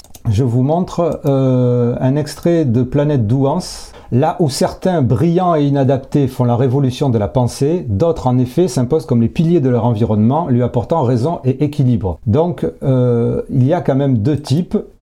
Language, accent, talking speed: French, French, 180 wpm